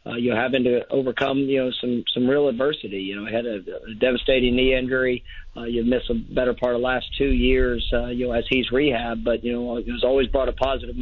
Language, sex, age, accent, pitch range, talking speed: English, male, 40-59, American, 120-130 Hz, 245 wpm